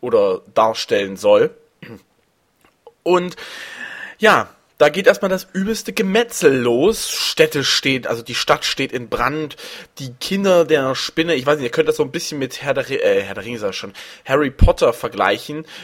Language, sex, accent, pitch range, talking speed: German, male, German, 135-220 Hz, 170 wpm